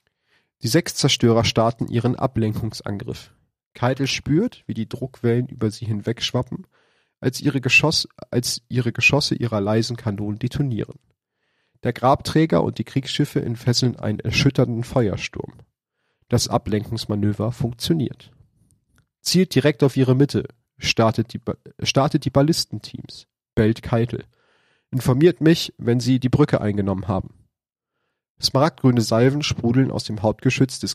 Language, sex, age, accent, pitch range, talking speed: German, male, 40-59, German, 110-135 Hz, 120 wpm